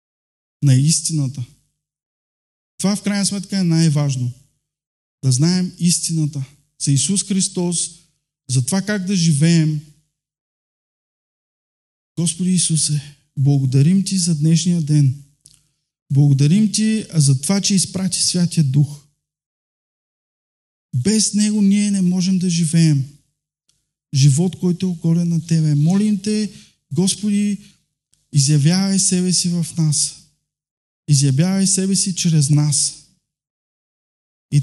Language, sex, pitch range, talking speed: Bulgarian, male, 145-185 Hz, 105 wpm